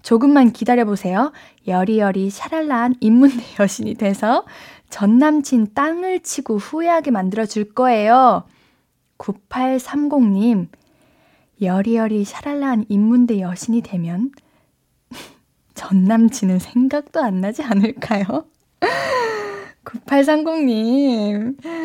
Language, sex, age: Korean, female, 20-39